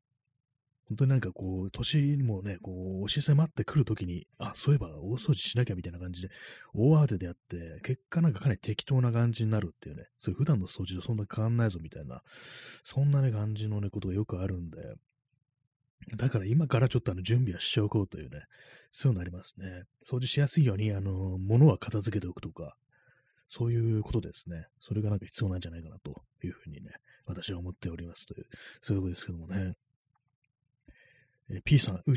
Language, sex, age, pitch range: Japanese, male, 30-49, 95-130 Hz